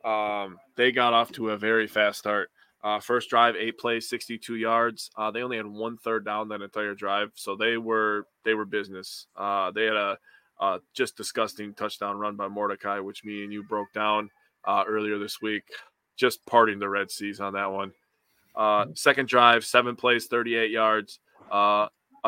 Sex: male